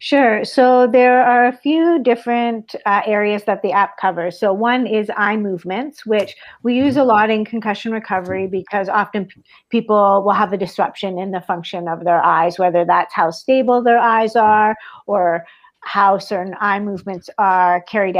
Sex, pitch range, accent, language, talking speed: female, 195-225 Hz, American, English, 175 wpm